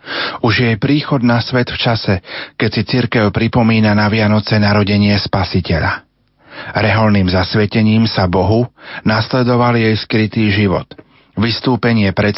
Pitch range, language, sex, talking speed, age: 100-115 Hz, Slovak, male, 125 wpm, 40-59